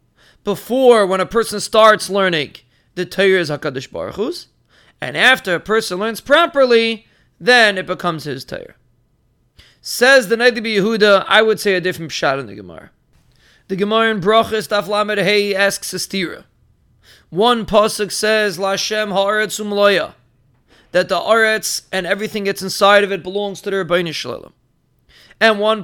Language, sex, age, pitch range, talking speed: English, male, 30-49, 180-215 Hz, 145 wpm